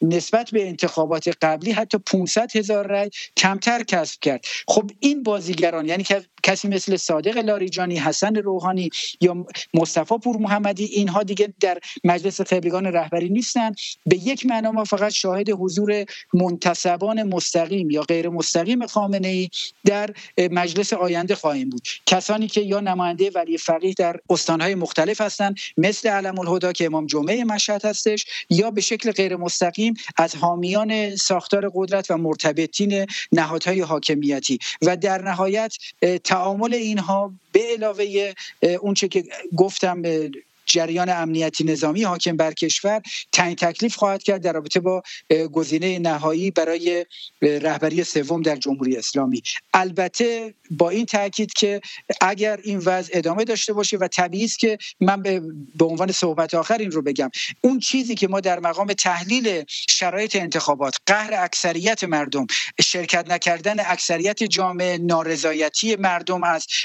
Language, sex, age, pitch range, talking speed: English, male, 50-69, 170-210 Hz, 140 wpm